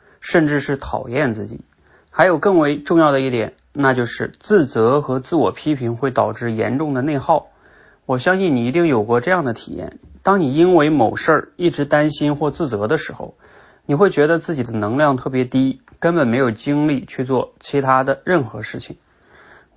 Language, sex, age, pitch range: Chinese, male, 30-49, 120-155 Hz